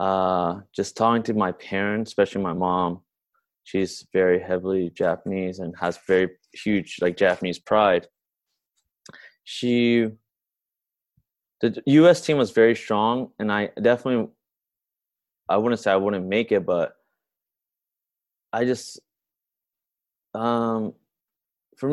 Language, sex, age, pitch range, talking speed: English, male, 20-39, 95-120 Hz, 120 wpm